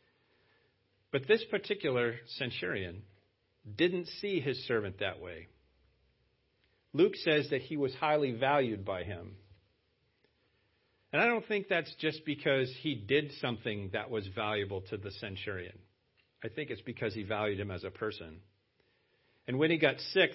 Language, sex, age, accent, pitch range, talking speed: English, male, 50-69, American, 105-145 Hz, 145 wpm